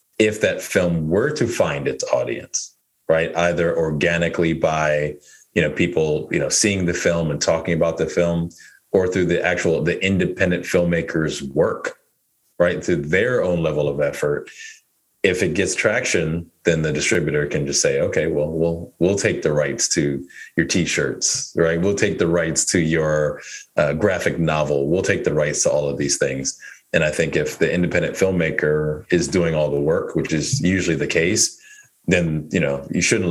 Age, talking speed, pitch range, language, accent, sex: 30-49, 180 wpm, 80-105 Hz, English, American, male